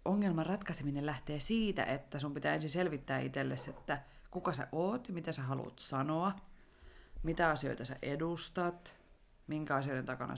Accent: native